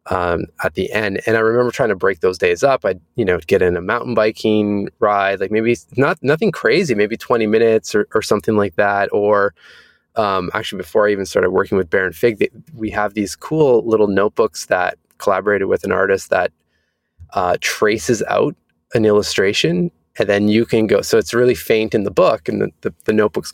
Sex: male